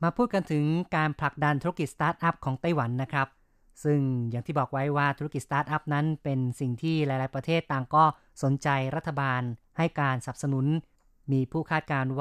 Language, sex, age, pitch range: Thai, female, 20-39, 130-150 Hz